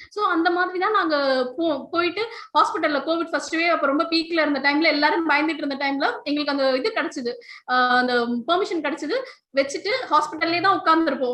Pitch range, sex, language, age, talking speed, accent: 280-350 Hz, female, Tamil, 20-39, 130 wpm, native